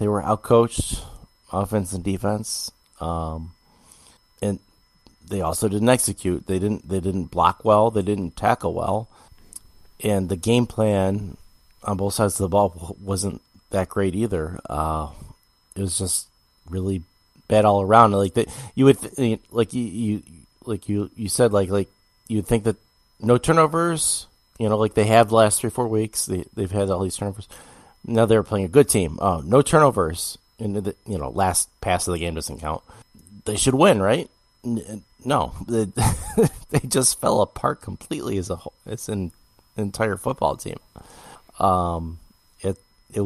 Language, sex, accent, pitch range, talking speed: English, male, American, 90-110 Hz, 170 wpm